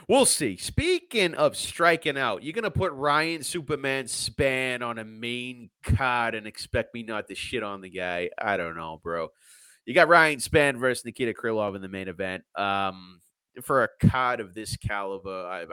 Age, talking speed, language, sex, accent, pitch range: 30-49, 185 wpm, English, male, American, 95-135 Hz